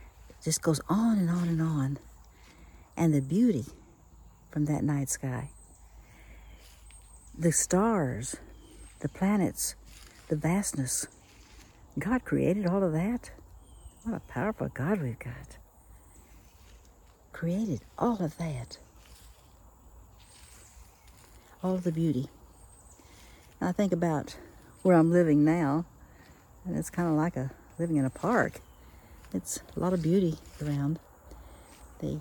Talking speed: 115 wpm